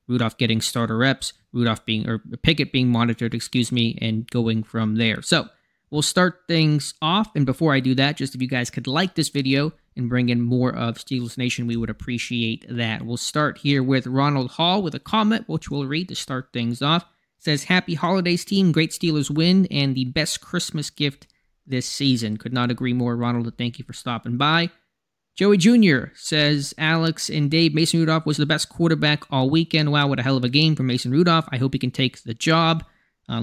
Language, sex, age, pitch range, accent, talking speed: English, male, 20-39, 120-150 Hz, American, 210 wpm